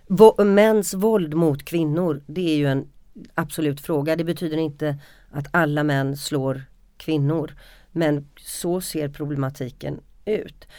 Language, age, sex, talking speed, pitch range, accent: Swedish, 40-59, female, 130 wpm, 150-185 Hz, native